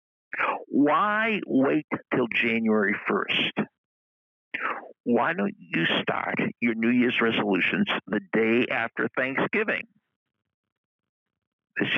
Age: 60-79